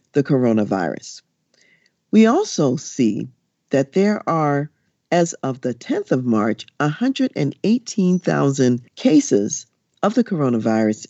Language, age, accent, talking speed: English, 50-69, American, 95 wpm